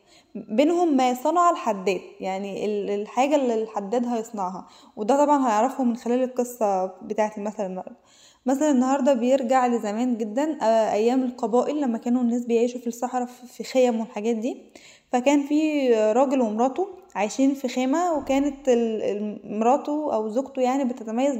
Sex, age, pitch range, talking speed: female, 10-29, 220-275 Hz, 135 wpm